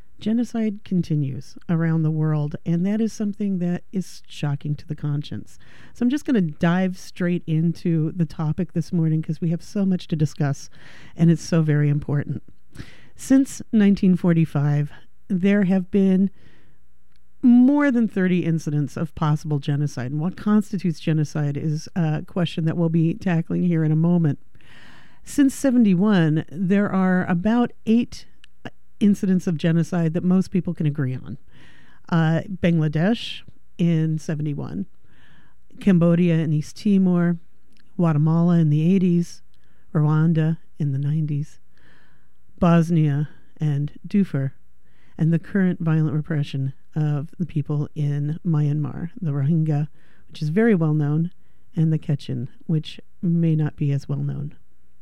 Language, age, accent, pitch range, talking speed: English, 50-69, American, 150-180 Hz, 140 wpm